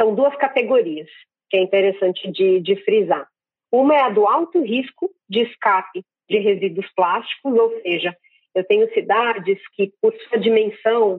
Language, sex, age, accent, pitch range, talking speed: Portuguese, female, 40-59, Brazilian, 200-265 Hz, 155 wpm